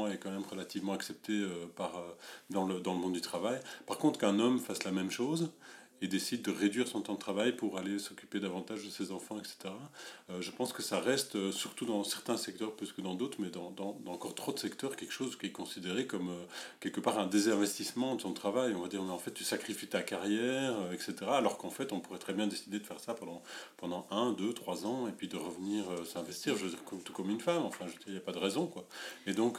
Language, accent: French, French